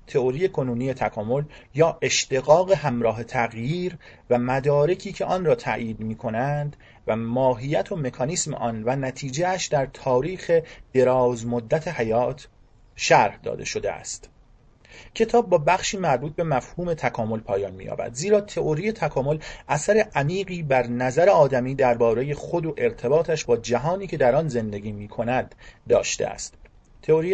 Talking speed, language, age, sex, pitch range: 135 wpm, Persian, 30-49, male, 120-165 Hz